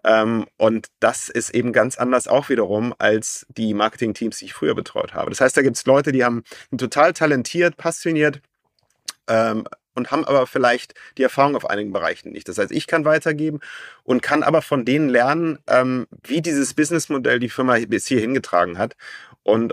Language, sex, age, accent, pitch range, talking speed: German, male, 30-49, German, 110-140 Hz, 185 wpm